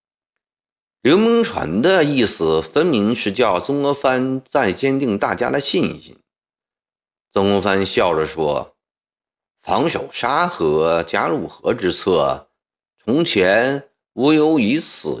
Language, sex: Chinese, male